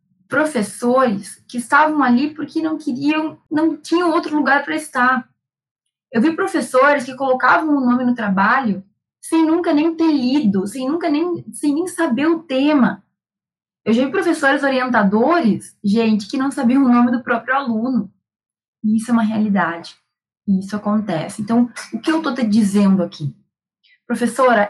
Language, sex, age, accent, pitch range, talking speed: Portuguese, female, 20-39, Brazilian, 205-260 Hz, 165 wpm